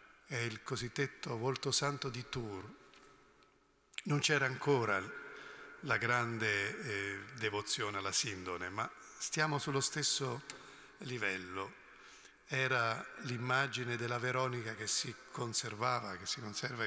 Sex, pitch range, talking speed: male, 110-145 Hz, 110 wpm